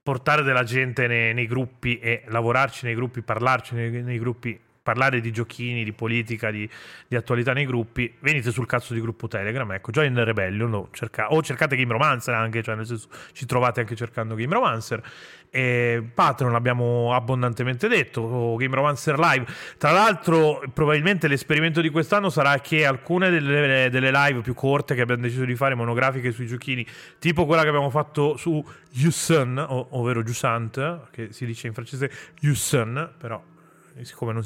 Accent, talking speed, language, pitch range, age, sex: native, 175 wpm, Italian, 120-140 Hz, 30-49, male